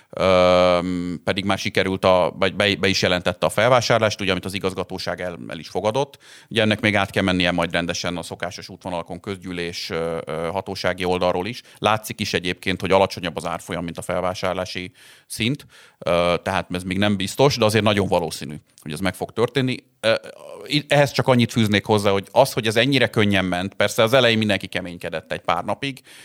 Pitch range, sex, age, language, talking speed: 90-110 Hz, male, 30-49, Hungarian, 170 wpm